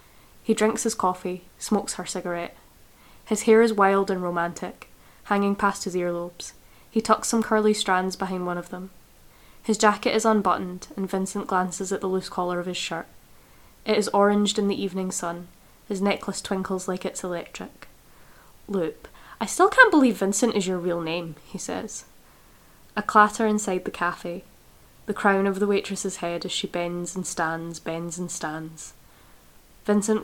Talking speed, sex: 170 wpm, female